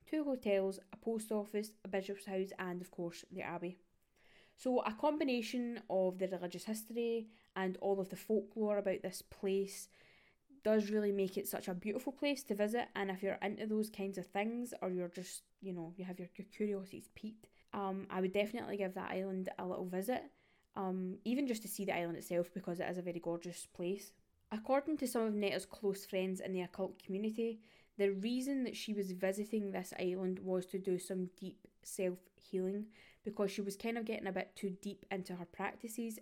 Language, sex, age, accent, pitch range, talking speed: English, female, 10-29, British, 185-215 Hz, 195 wpm